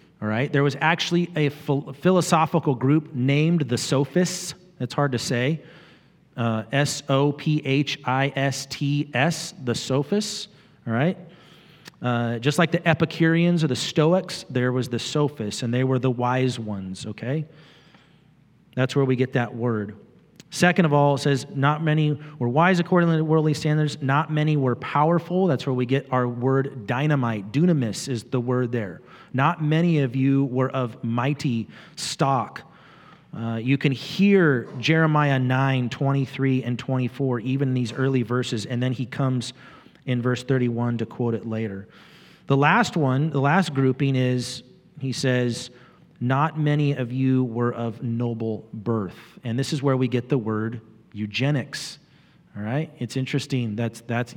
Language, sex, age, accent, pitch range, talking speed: English, male, 30-49, American, 125-155 Hz, 160 wpm